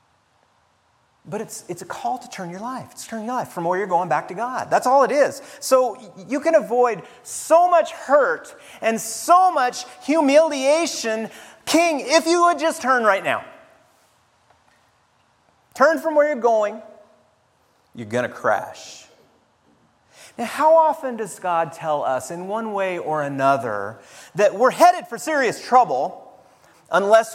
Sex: male